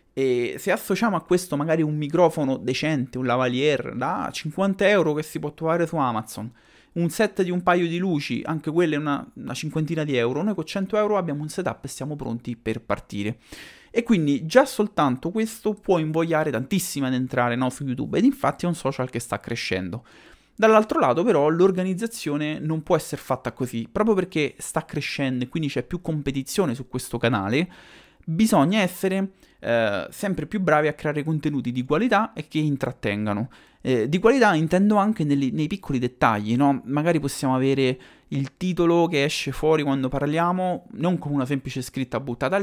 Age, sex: 30-49, male